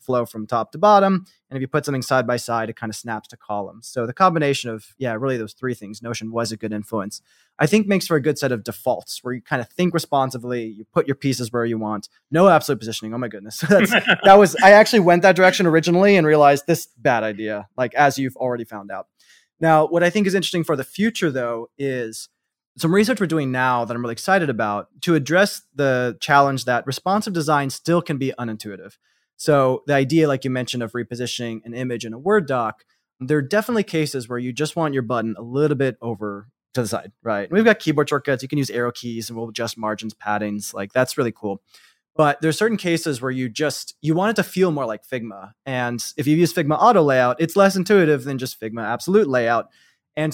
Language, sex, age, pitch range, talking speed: English, male, 20-39, 115-165 Hz, 230 wpm